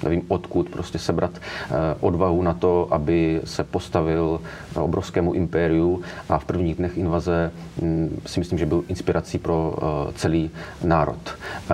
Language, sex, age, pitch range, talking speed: Czech, male, 30-49, 80-90 Hz, 130 wpm